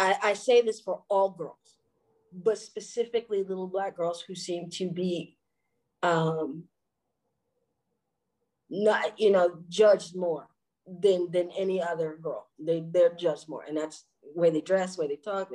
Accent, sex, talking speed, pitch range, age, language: American, female, 160 wpm, 160-190 Hz, 40-59, English